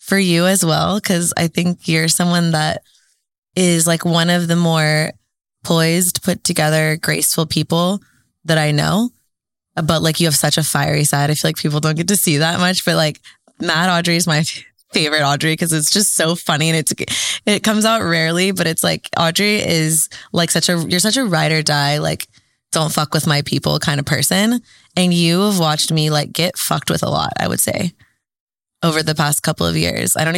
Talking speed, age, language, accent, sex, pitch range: 210 wpm, 20-39, English, American, female, 150-175 Hz